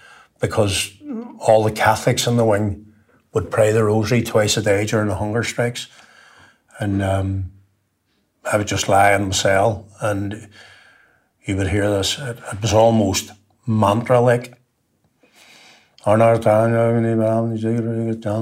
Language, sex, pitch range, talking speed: English, male, 100-115 Hz, 125 wpm